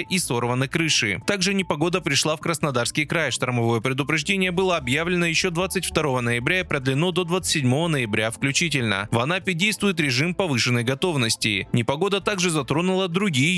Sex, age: male, 20-39